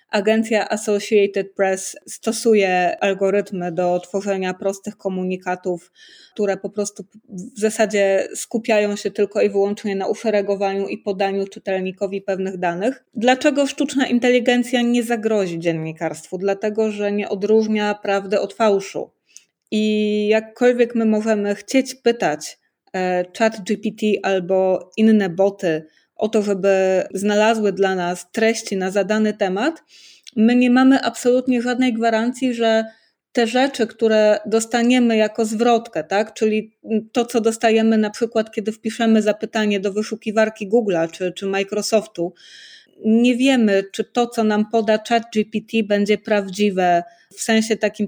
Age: 20-39